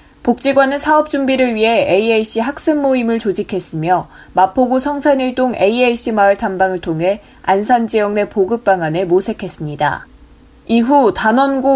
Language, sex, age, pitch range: Korean, female, 20-39, 190-255 Hz